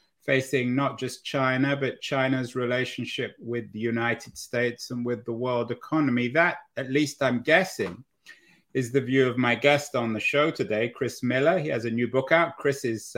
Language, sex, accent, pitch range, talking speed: English, male, British, 125-155 Hz, 185 wpm